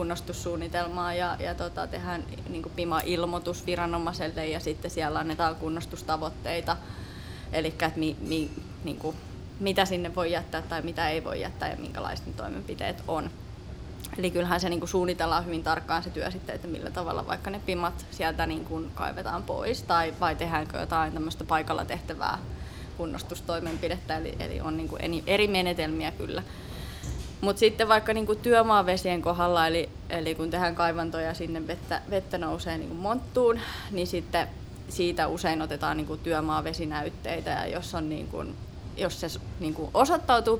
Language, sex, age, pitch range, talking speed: Finnish, female, 20-39, 160-185 Hz, 150 wpm